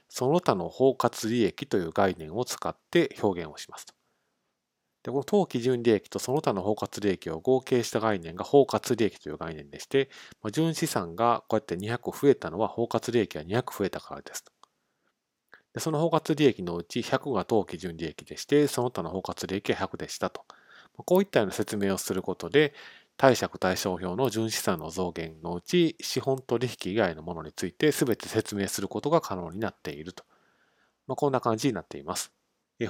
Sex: male